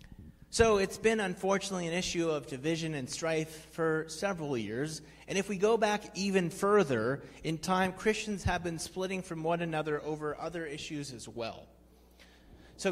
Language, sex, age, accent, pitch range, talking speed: English, male, 30-49, American, 145-185 Hz, 165 wpm